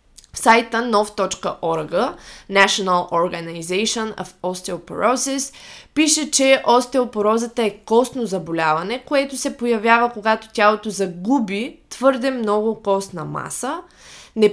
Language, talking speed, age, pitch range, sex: Bulgarian, 100 wpm, 20-39, 195-255 Hz, female